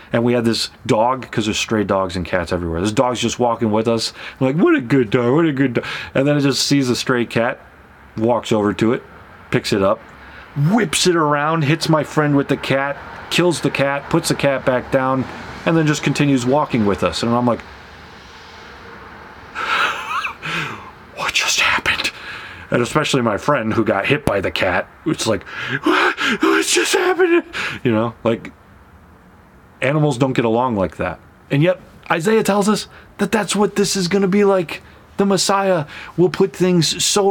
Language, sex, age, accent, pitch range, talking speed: English, male, 30-49, American, 120-185 Hz, 185 wpm